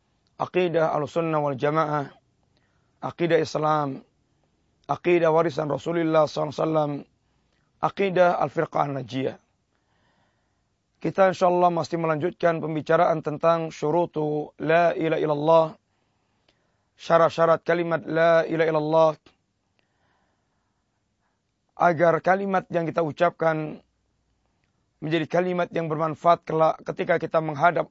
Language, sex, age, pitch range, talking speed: Malay, male, 30-49, 155-180 Hz, 85 wpm